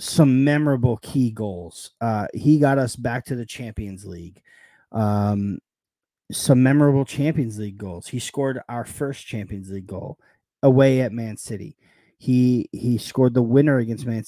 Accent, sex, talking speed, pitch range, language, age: American, male, 155 wpm, 110-130 Hz, English, 30-49